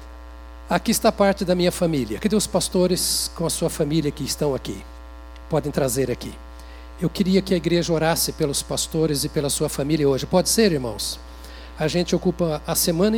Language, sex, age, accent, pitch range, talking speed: Portuguese, male, 60-79, Brazilian, 115-180 Hz, 180 wpm